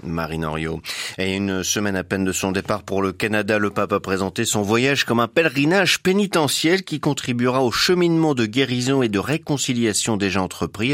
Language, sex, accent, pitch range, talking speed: French, male, French, 95-125 Hz, 175 wpm